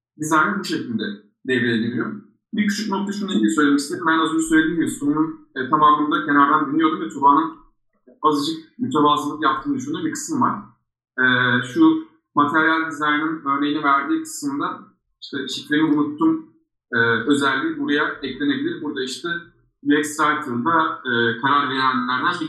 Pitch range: 130-215 Hz